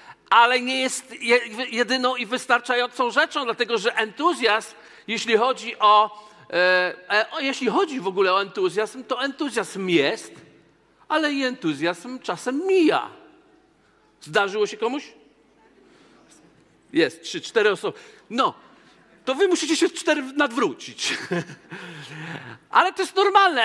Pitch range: 195-255 Hz